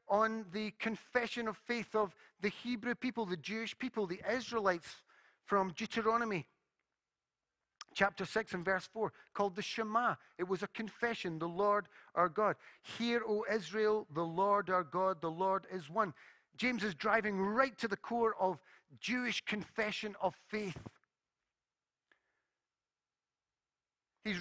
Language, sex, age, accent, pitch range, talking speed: English, male, 40-59, British, 185-230 Hz, 140 wpm